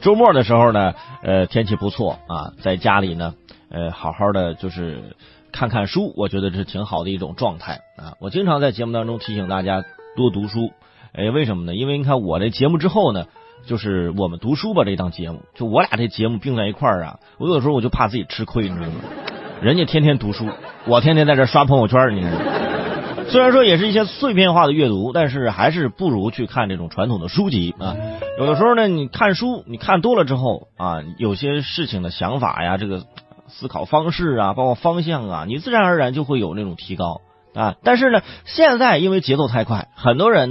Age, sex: 30-49, male